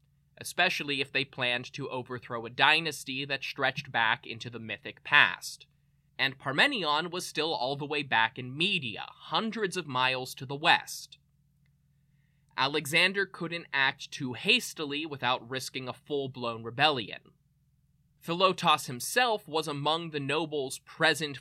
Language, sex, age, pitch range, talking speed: English, male, 20-39, 130-150 Hz, 135 wpm